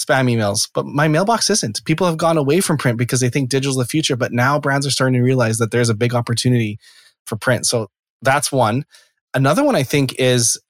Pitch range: 115-140 Hz